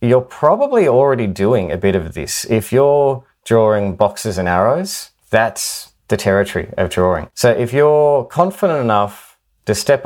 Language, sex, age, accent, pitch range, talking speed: English, male, 30-49, Australian, 95-115 Hz, 155 wpm